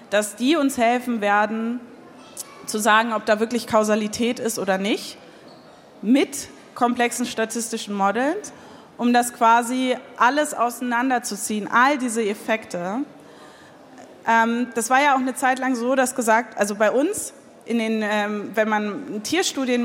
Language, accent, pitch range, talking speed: German, German, 210-240 Hz, 135 wpm